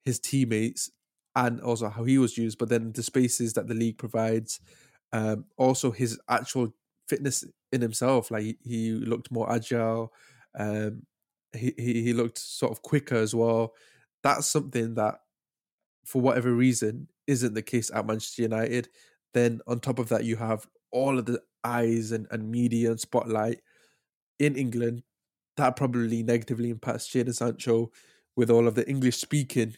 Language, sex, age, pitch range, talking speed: English, male, 20-39, 115-130 Hz, 160 wpm